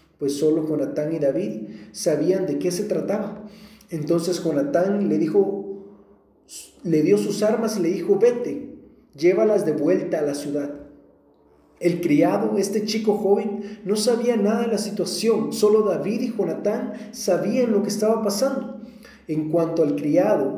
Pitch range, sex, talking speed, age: 180-220 Hz, male, 150 wpm, 40-59